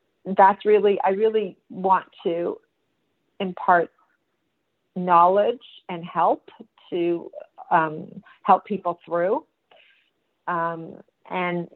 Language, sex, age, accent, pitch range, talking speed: English, female, 40-59, American, 155-180 Hz, 85 wpm